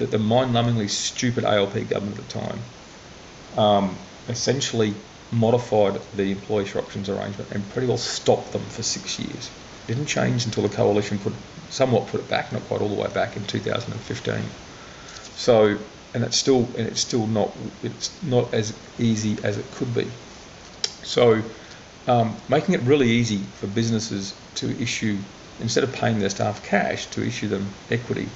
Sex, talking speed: male, 165 wpm